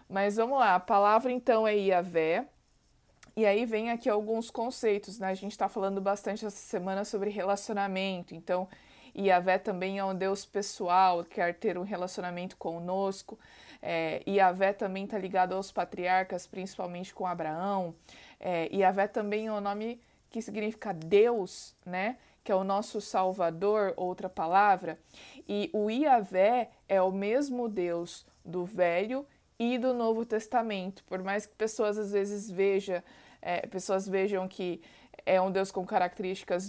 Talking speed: 140 wpm